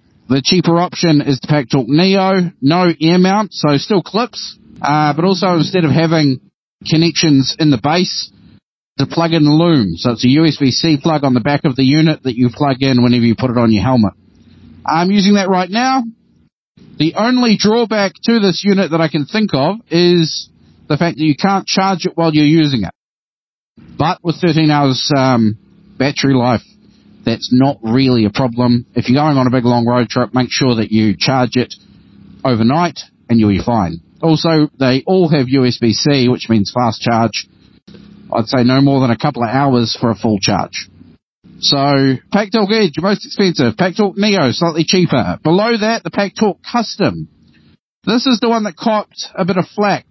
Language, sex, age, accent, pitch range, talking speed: English, male, 30-49, Australian, 130-185 Hz, 185 wpm